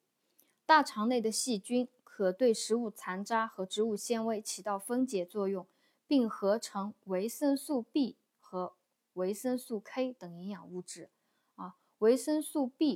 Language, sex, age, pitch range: Chinese, female, 20-39, 190-250 Hz